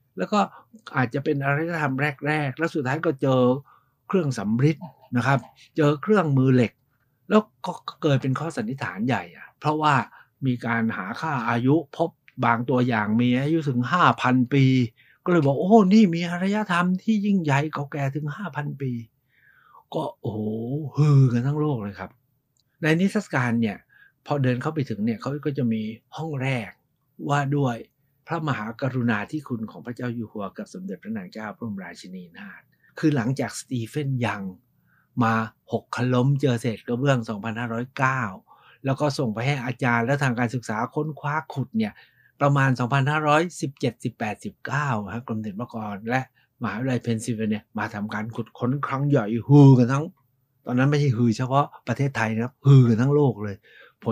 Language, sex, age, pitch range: Thai, male, 60-79, 115-150 Hz